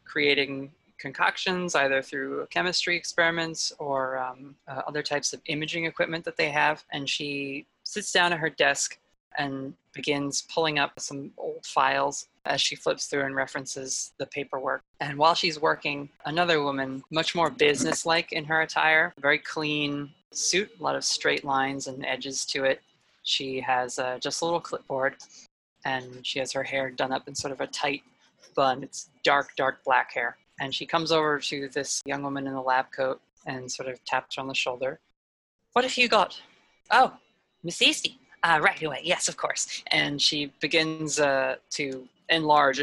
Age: 20-39